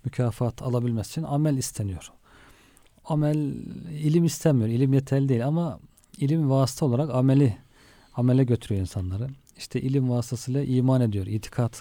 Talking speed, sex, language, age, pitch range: 125 wpm, male, Turkish, 40-59, 115-135 Hz